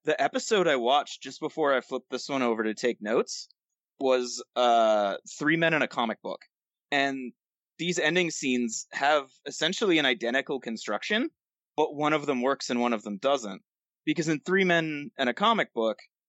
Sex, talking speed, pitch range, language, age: male, 180 wpm, 115-145 Hz, English, 20-39